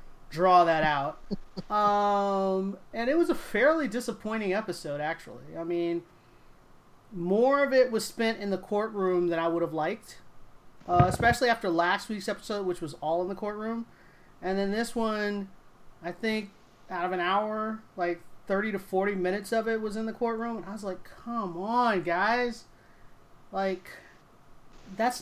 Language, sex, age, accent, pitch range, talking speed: English, male, 30-49, American, 180-225 Hz, 160 wpm